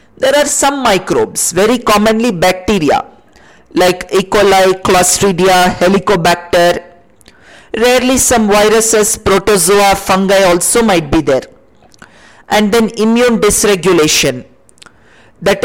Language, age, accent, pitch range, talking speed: English, 50-69, Indian, 185-225 Hz, 100 wpm